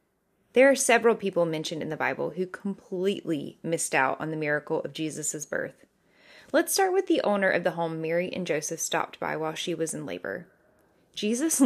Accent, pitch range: American, 165-225 Hz